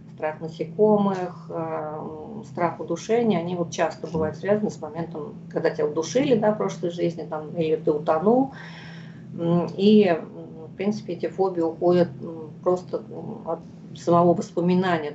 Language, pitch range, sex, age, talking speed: Russian, 160-185 Hz, female, 40-59, 125 wpm